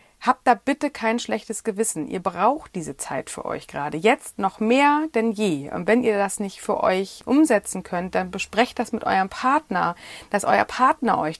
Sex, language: female, German